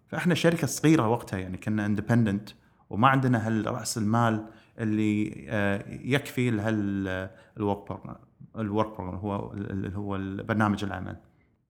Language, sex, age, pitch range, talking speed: English, male, 30-49, 100-120 Hz, 90 wpm